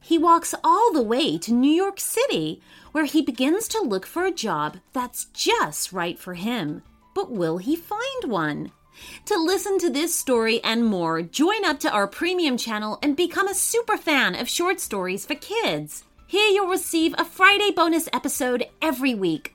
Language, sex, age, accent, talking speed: English, female, 30-49, American, 180 wpm